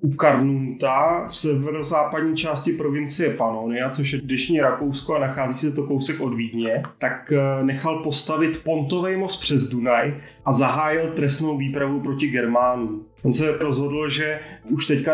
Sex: male